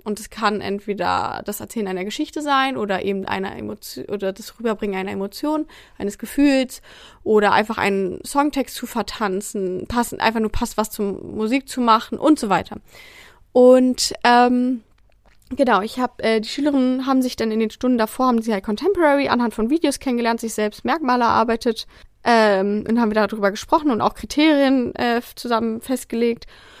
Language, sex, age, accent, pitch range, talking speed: German, female, 20-39, German, 210-250 Hz, 170 wpm